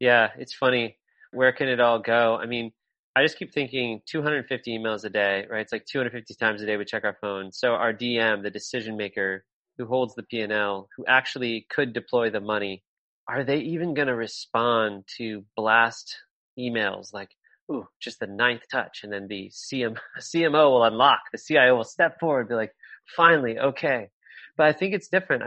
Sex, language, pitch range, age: male, English, 115-135 Hz, 30-49